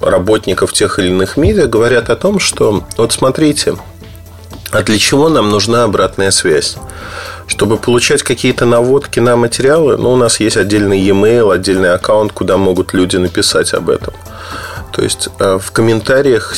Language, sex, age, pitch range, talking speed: Russian, male, 30-49, 95-120 Hz, 150 wpm